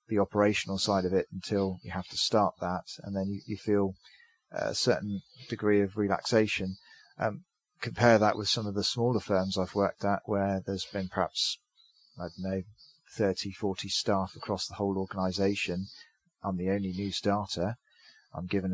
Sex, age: male, 30-49